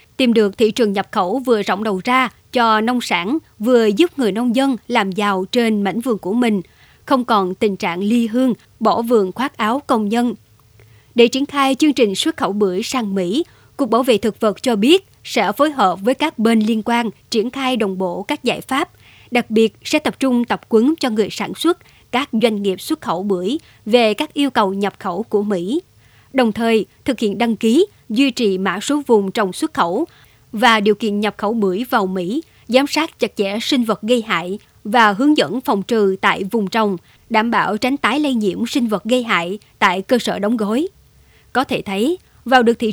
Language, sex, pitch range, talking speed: Vietnamese, male, 205-255 Hz, 215 wpm